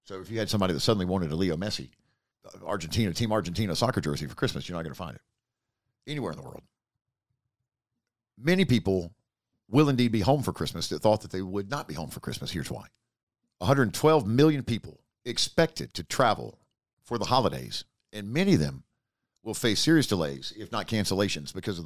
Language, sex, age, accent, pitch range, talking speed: English, male, 50-69, American, 100-130 Hz, 190 wpm